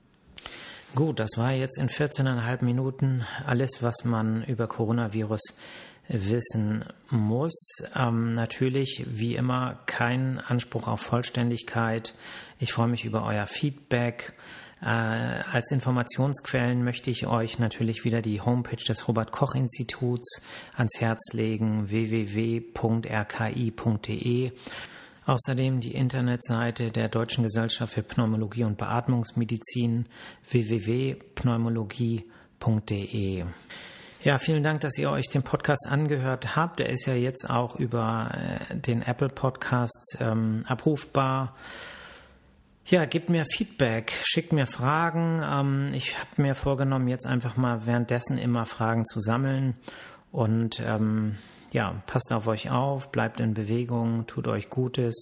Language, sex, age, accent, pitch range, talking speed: German, male, 40-59, German, 115-130 Hz, 120 wpm